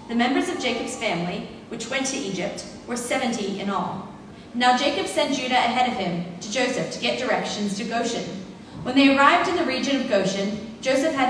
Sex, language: female, English